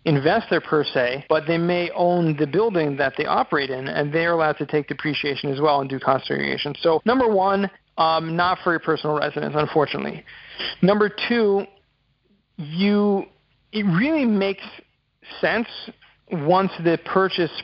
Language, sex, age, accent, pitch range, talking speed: English, male, 40-59, American, 145-175 Hz, 150 wpm